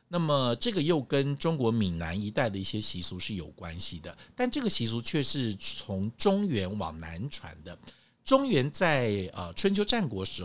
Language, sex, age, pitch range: Chinese, male, 50-69, 100-145 Hz